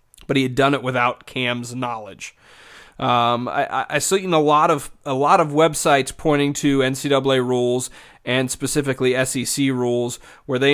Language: English